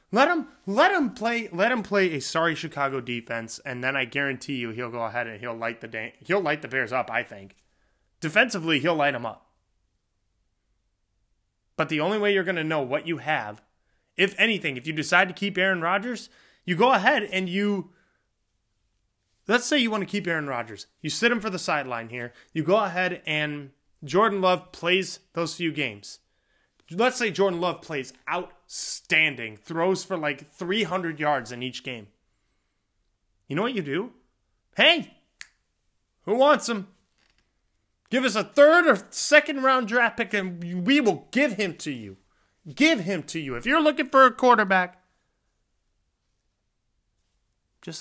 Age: 20-39